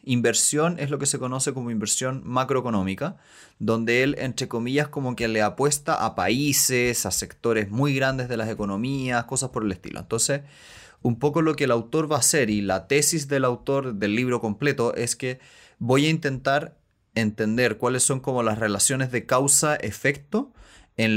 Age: 30-49